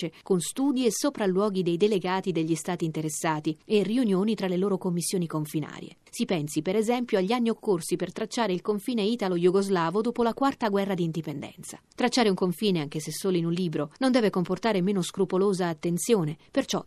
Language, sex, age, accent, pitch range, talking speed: Italian, female, 30-49, native, 165-225 Hz, 175 wpm